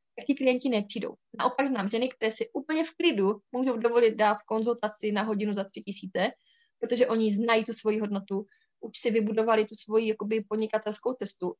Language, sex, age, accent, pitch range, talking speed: Czech, female, 20-39, native, 210-250 Hz, 175 wpm